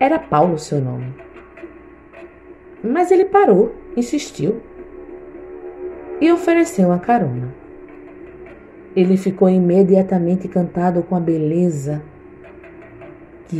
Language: Portuguese